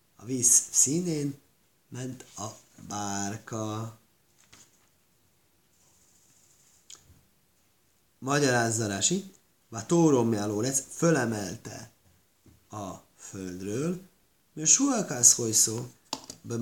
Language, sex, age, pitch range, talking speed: Hungarian, male, 30-49, 105-135 Hz, 65 wpm